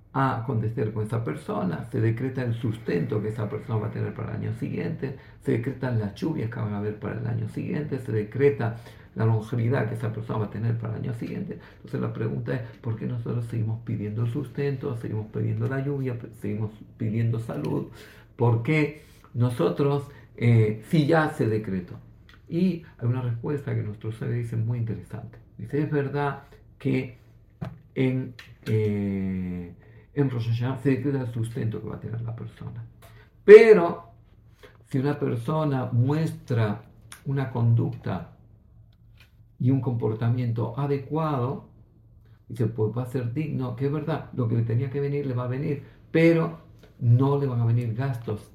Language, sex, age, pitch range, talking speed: Greek, male, 50-69, 110-140 Hz, 165 wpm